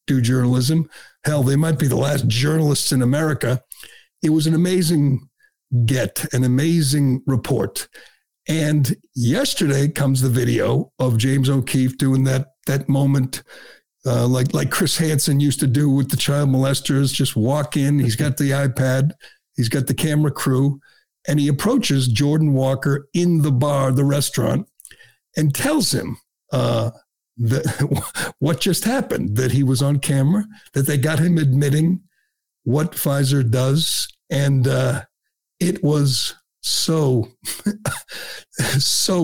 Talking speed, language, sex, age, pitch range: 140 wpm, English, male, 60-79, 130-150 Hz